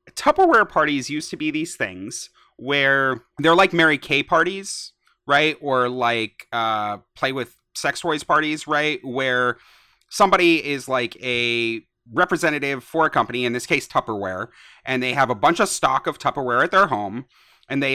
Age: 30-49